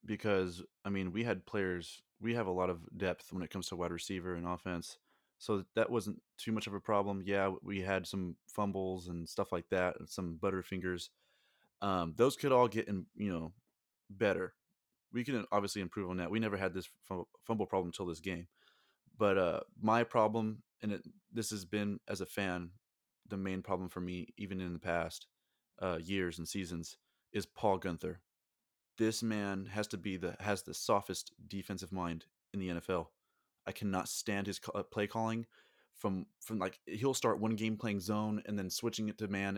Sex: male